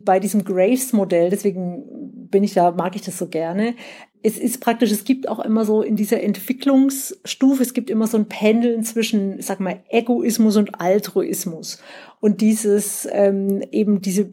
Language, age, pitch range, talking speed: German, 40-59, 185-225 Hz, 170 wpm